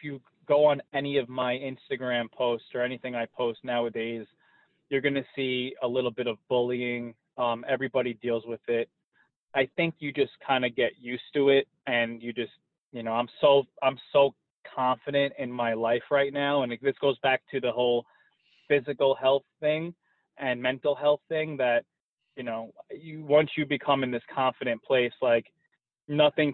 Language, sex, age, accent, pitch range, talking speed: English, male, 20-39, American, 125-155 Hz, 180 wpm